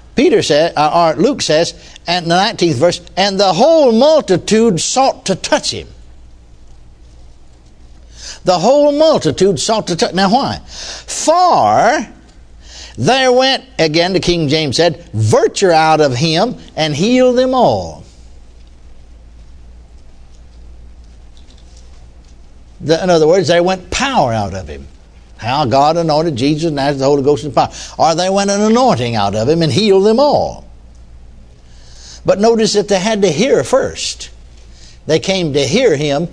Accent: American